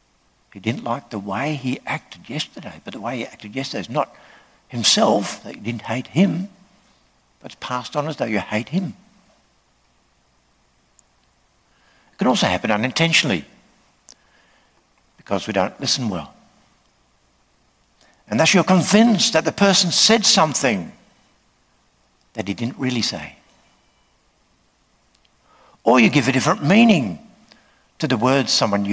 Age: 60-79